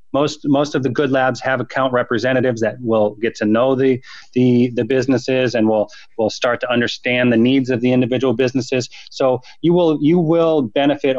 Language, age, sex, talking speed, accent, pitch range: English, 30-49, male, 195 wpm, American, 110-135 Hz